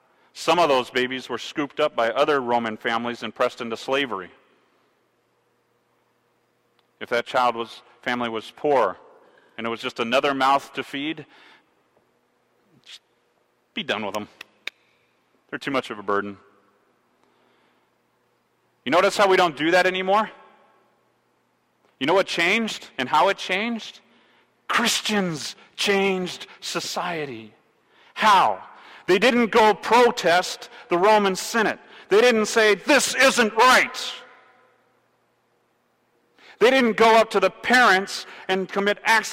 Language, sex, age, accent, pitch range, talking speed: English, male, 40-59, American, 125-200 Hz, 125 wpm